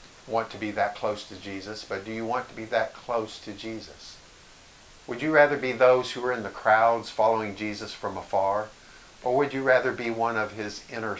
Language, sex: English, male